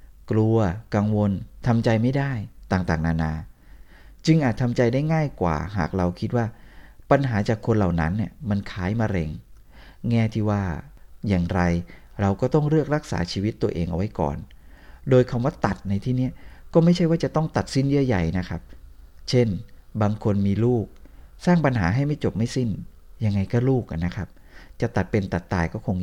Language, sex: Thai, male